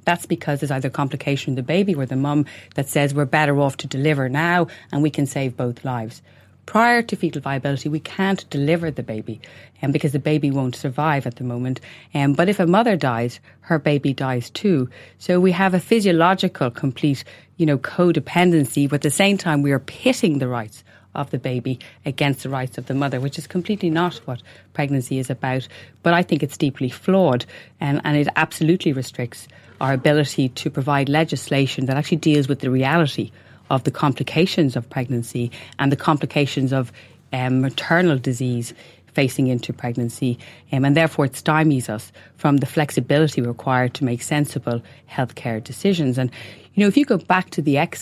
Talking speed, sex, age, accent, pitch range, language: 190 wpm, female, 30-49, Irish, 130-160 Hz, English